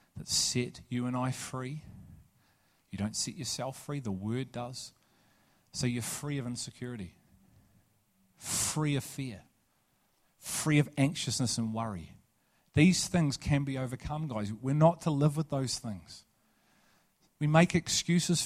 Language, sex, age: English, male, 40-59